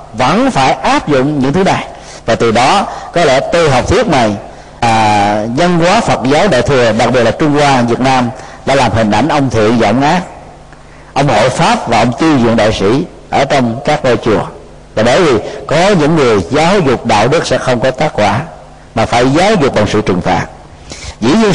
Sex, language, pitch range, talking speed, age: male, Vietnamese, 125-205 Hz, 215 wpm, 50-69